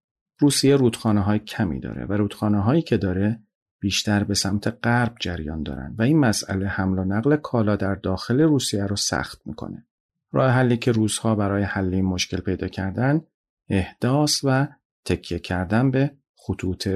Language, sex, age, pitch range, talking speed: Persian, male, 40-59, 95-120 Hz, 160 wpm